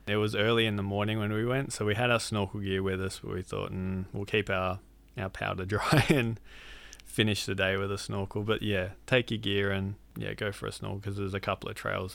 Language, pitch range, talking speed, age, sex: English, 95-110 Hz, 250 wpm, 20-39, male